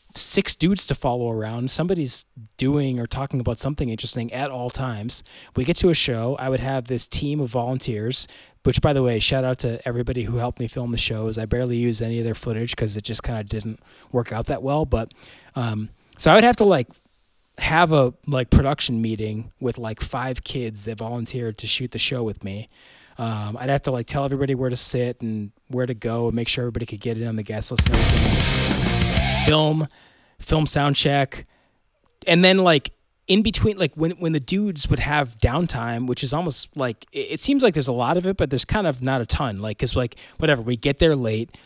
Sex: male